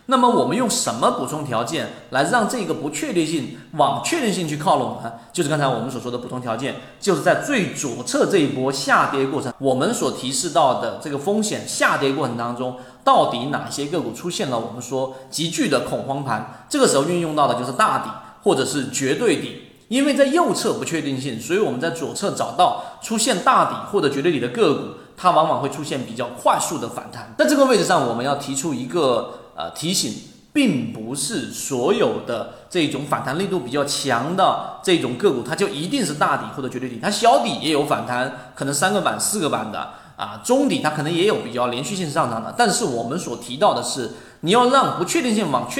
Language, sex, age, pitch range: Chinese, male, 30-49, 125-200 Hz